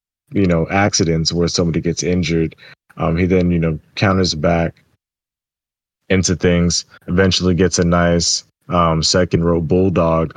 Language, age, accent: English, 20-39, American